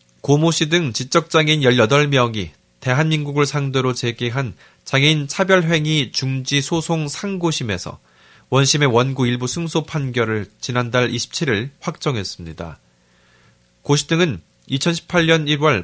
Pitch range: 110-160 Hz